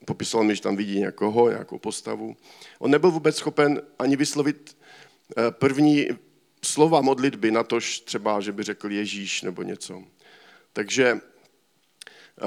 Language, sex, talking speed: Czech, male, 130 wpm